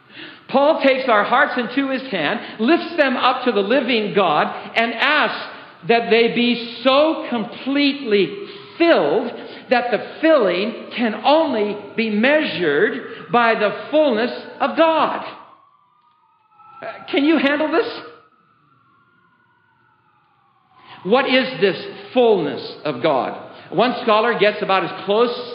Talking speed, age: 115 wpm, 60-79